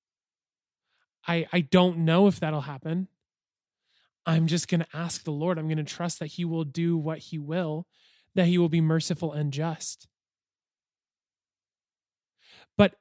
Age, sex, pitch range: 20-39, male, 160-190 Hz